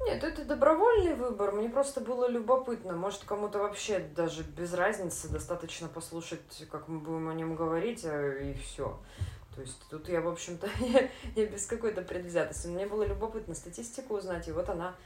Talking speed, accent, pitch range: 170 wpm, native, 160-215 Hz